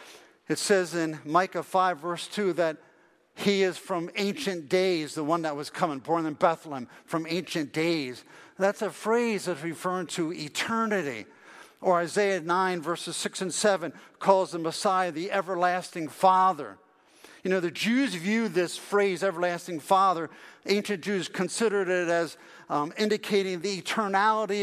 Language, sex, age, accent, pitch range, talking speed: English, male, 50-69, American, 170-205 Hz, 150 wpm